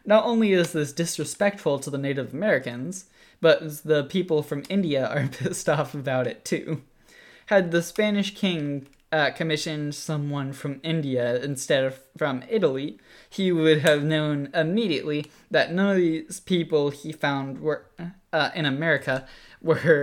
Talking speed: 150 wpm